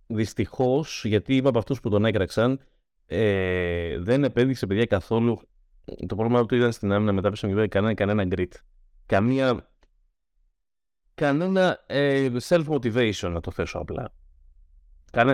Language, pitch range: Greek, 100-145 Hz